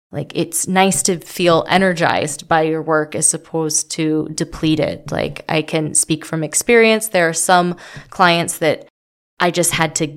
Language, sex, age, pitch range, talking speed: English, female, 20-39, 160-175 Hz, 170 wpm